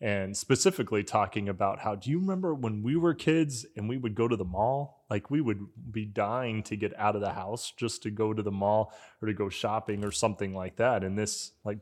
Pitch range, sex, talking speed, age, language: 105-120 Hz, male, 240 wpm, 20-39, English